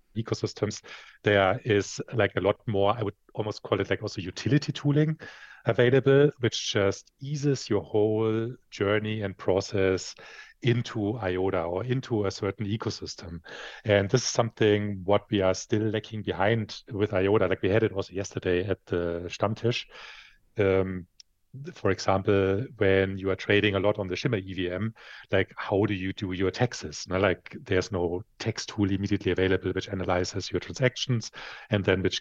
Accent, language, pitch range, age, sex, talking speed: German, English, 95-115 Hz, 40-59, male, 160 wpm